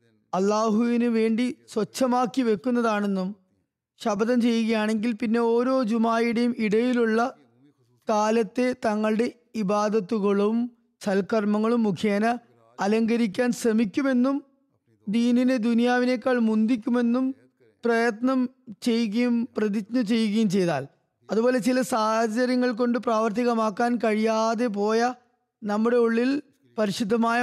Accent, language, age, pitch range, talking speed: native, Malayalam, 20-39, 210-240 Hz, 75 wpm